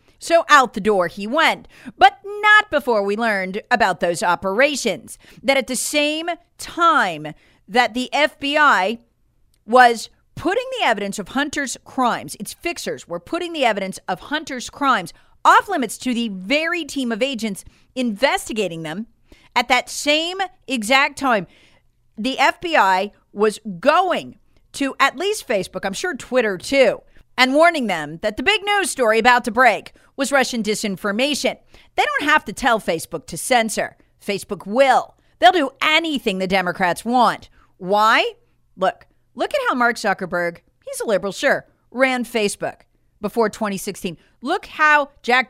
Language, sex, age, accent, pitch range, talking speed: English, female, 40-59, American, 200-300 Hz, 150 wpm